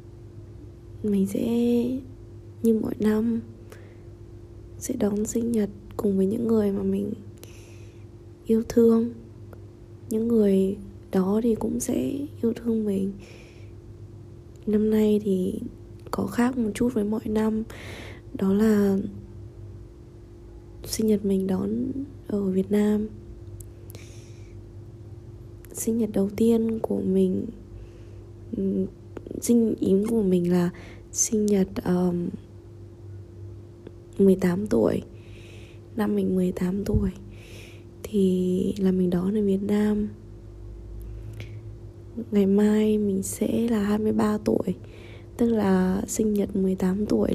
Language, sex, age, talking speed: Vietnamese, female, 20-39, 105 wpm